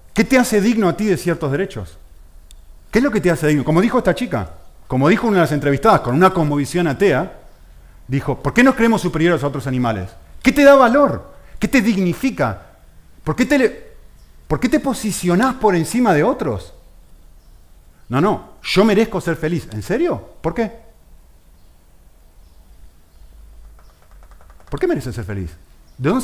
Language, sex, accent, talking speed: Spanish, male, Argentinian, 165 wpm